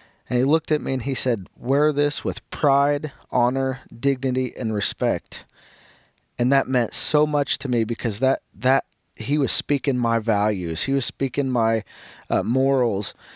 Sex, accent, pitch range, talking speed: male, American, 115-140 Hz, 165 wpm